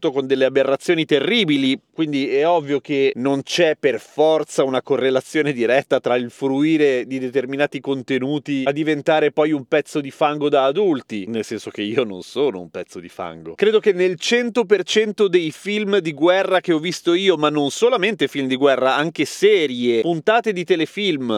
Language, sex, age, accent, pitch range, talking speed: Italian, male, 30-49, native, 140-195 Hz, 175 wpm